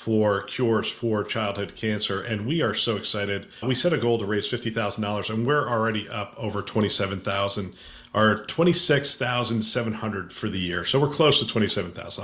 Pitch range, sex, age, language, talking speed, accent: 105-120 Hz, male, 40-59, English, 160 wpm, American